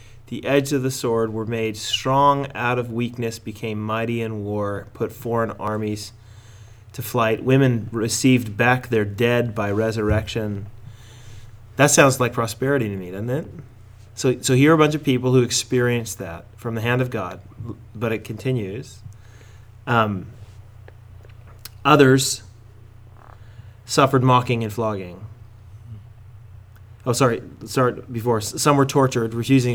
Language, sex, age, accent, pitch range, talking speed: English, male, 30-49, American, 105-125 Hz, 135 wpm